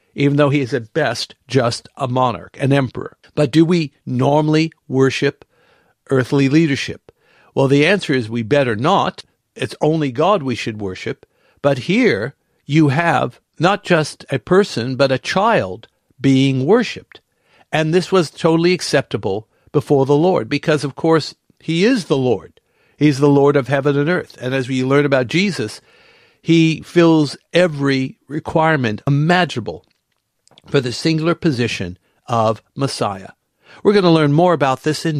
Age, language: 60-79, English